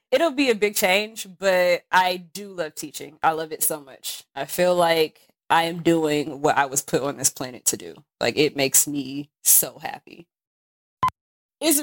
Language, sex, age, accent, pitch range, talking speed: English, female, 20-39, American, 165-200 Hz, 190 wpm